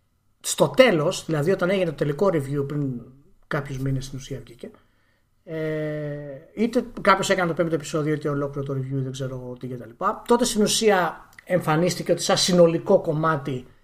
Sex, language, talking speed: male, Greek, 160 wpm